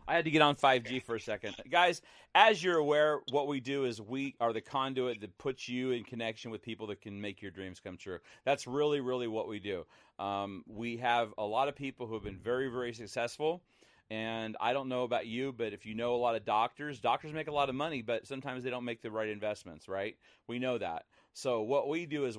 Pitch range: 110-135 Hz